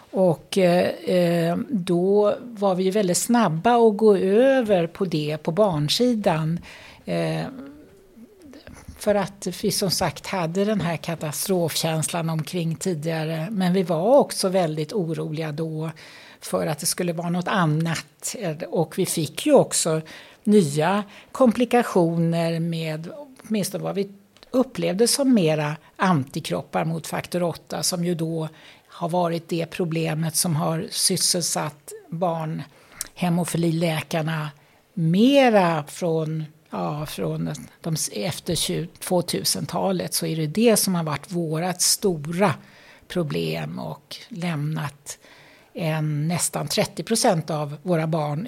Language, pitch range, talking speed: Swedish, 160-195 Hz, 120 wpm